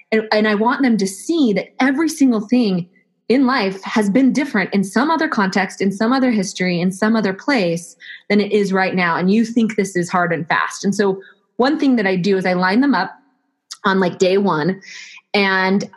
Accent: American